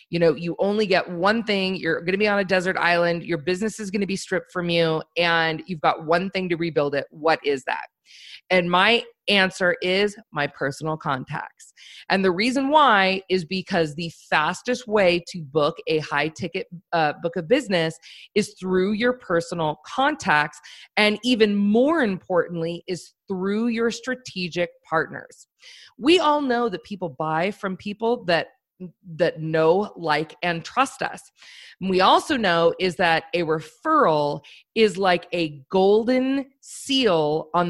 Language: English